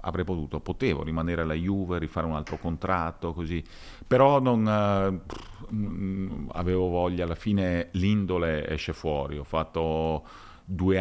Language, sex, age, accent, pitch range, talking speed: Italian, male, 40-59, native, 80-105 Hz, 130 wpm